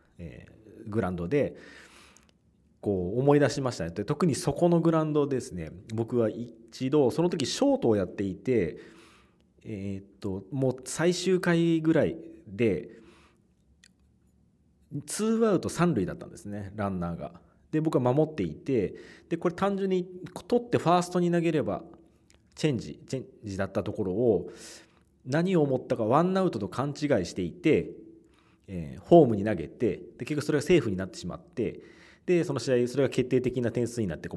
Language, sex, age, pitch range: Japanese, male, 40-59, 100-160 Hz